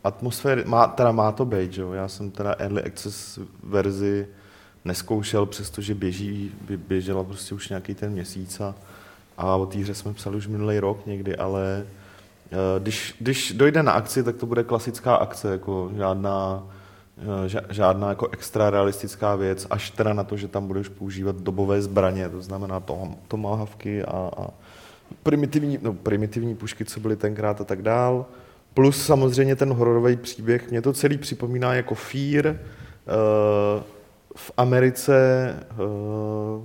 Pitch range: 100-120 Hz